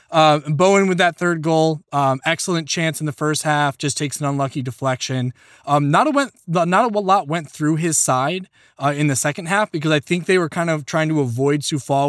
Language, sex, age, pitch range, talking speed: English, male, 20-39, 135-165 Hz, 225 wpm